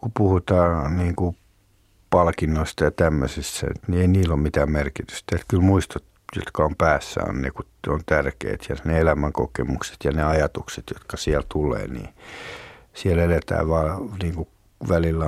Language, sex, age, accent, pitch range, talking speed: Finnish, male, 60-79, native, 75-90 Hz, 150 wpm